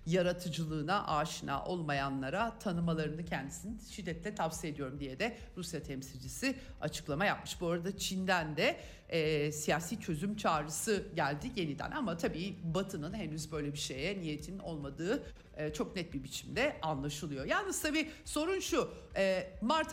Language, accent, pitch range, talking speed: Turkish, native, 155-210 Hz, 135 wpm